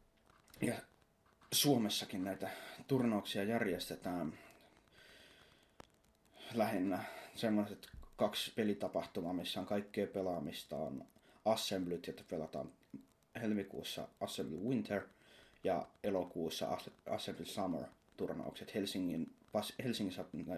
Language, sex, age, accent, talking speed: Finnish, male, 20-39, native, 80 wpm